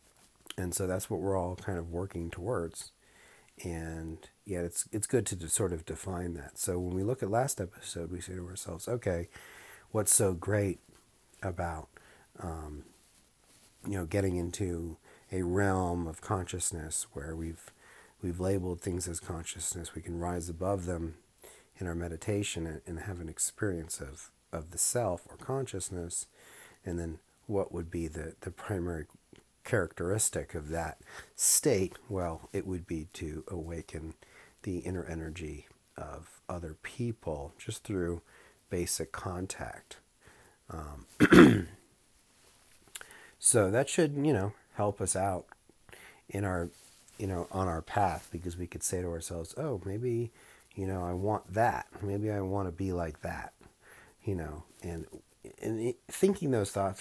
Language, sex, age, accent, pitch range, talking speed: English, male, 50-69, American, 85-100 Hz, 150 wpm